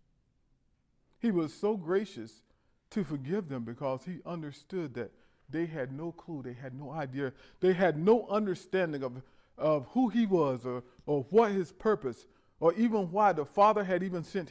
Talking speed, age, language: 170 wpm, 40-59, English